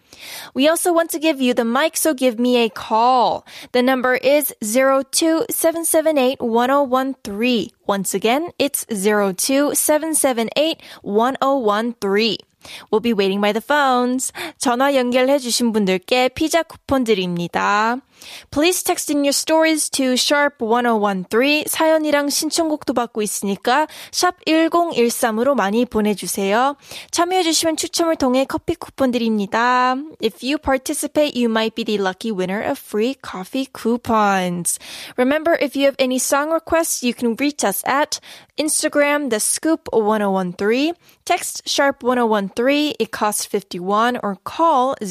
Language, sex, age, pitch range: Korean, female, 10-29, 220-295 Hz